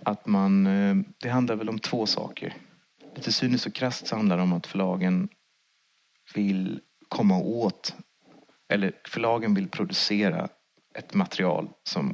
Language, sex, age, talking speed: Swedish, male, 30-49, 135 wpm